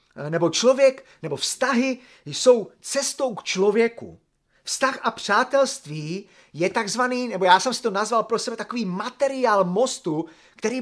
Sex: male